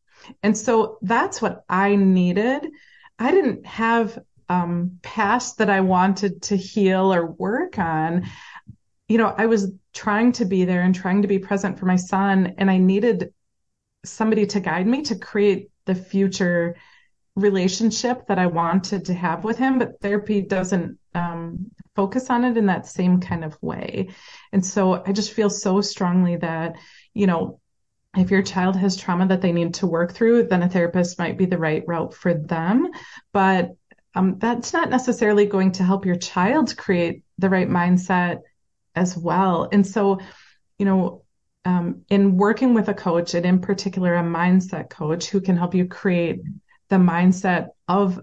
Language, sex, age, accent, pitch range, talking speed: English, female, 30-49, American, 180-210 Hz, 170 wpm